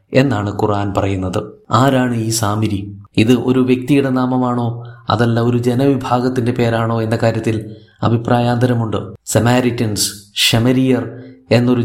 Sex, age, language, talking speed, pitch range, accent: male, 30-49, Malayalam, 95 wpm, 110-125 Hz, native